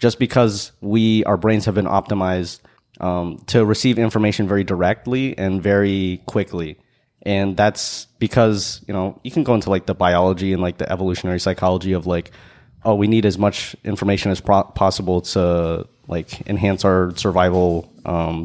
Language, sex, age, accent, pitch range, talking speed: English, male, 20-39, American, 90-110 Hz, 165 wpm